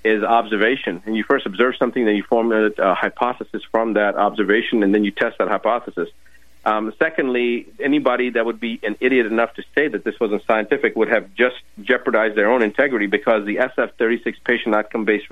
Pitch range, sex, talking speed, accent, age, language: 100-125 Hz, male, 190 wpm, American, 40-59, English